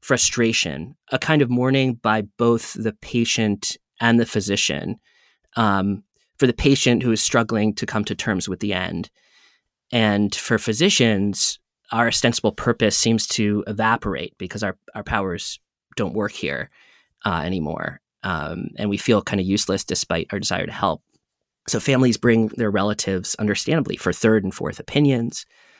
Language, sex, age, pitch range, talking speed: English, male, 20-39, 105-130 Hz, 155 wpm